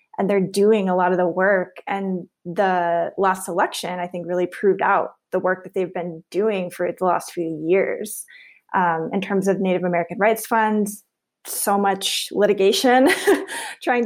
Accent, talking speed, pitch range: American, 170 wpm, 180-220 Hz